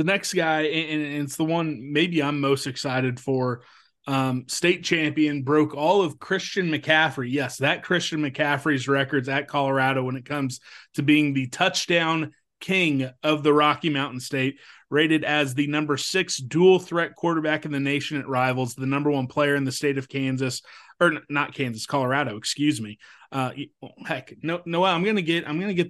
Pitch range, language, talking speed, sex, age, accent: 135-160 Hz, English, 180 wpm, male, 30-49, American